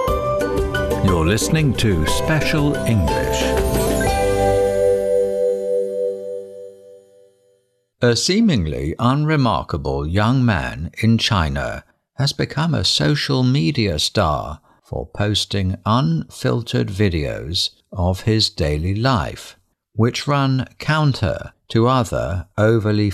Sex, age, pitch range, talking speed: male, 60-79, 95-125 Hz, 85 wpm